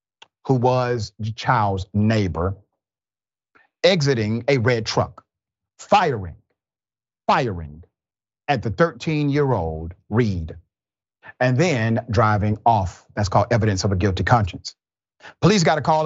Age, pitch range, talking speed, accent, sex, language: 40-59, 105-140 Hz, 110 wpm, American, male, English